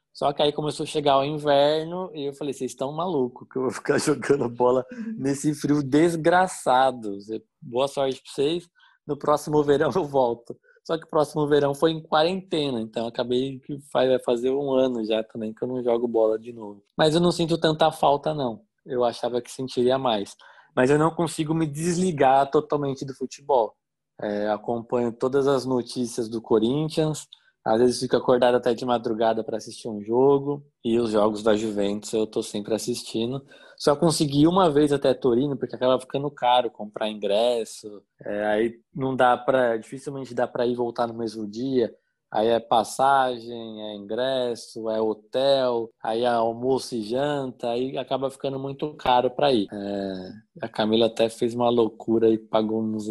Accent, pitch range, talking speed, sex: Brazilian, 115-145 Hz, 180 wpm, male